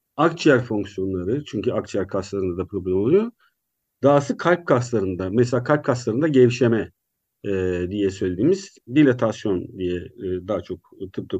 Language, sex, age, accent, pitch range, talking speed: Turkish, male, 50-69, native, 120-190 Hz, 125 wpm